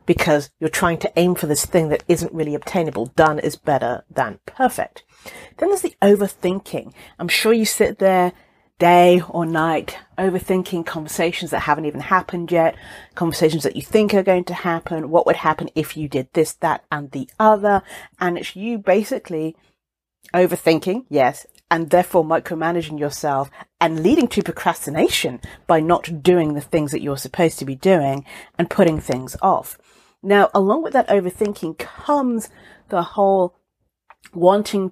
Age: 40-59